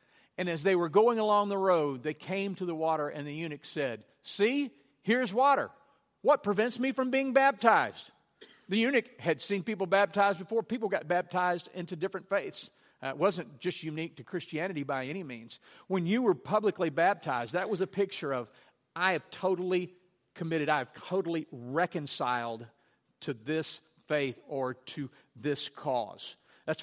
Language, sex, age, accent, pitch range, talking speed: English, male, 50-69, American, 150-200 Hz, 170 wpm